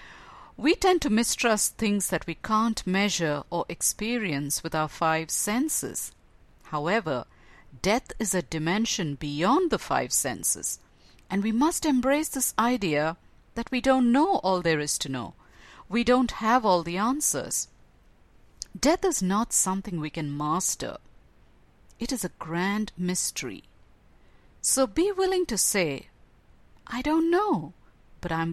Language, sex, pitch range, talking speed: English, female, 170-255 Hz, 140 wpm